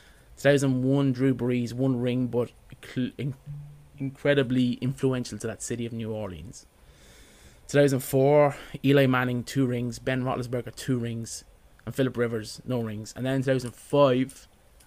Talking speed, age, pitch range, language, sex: 130 wpm, 20-39, 105-135 Hz, English, male